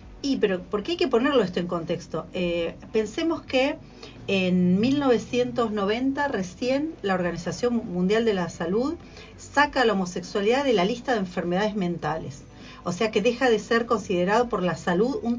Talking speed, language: 165 wpm, Spanish